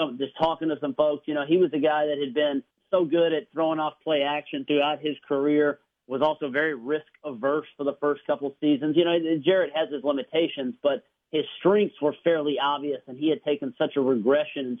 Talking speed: 225 wpm